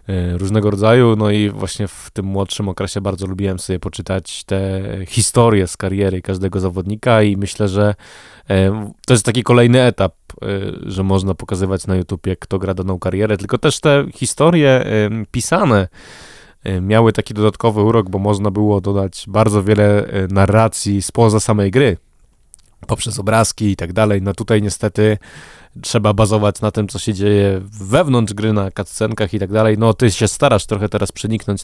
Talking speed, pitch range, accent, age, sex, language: 160 wpm, 95-110 Hz, native, 20-39, male, Polish